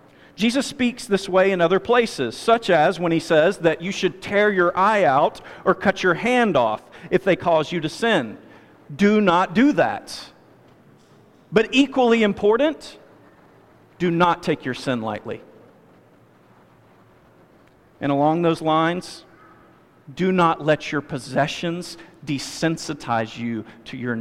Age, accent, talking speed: 40-59, American, 140 wpm